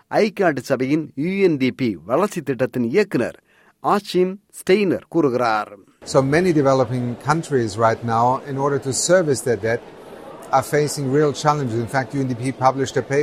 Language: Tamil